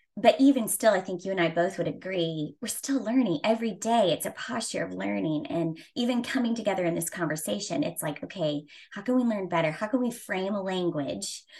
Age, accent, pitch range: 20-39, American, 160-190 Hz